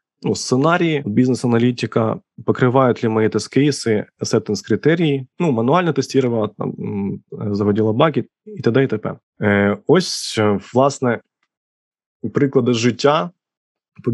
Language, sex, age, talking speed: Ukrainian, male, 20-39, 100 wpm